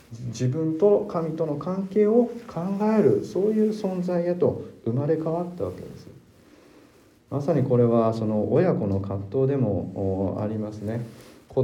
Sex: male